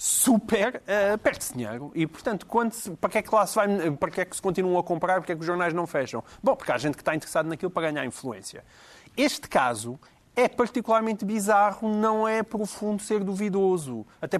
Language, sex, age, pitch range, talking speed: Portuguese, male, 30-49, 160-220 Hz, 210 wpm